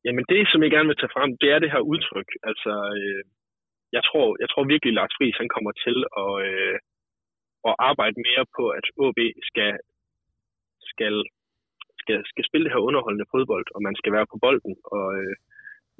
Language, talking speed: Danish, 190 wpm